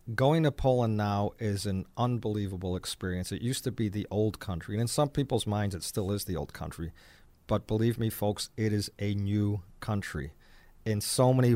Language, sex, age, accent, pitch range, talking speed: English, male, 40-59, American, 100-125 Hz, 195 wpm